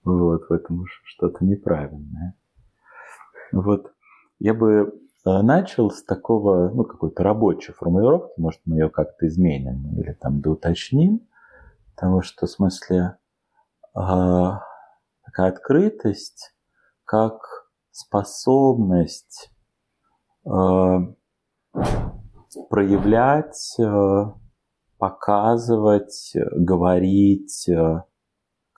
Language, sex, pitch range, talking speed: Russian, male, 90-115 Hz, 75 wpm